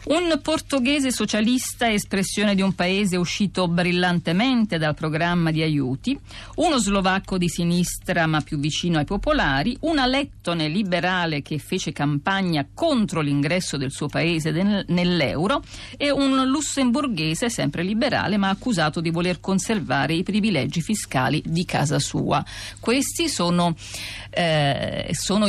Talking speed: 125 wpm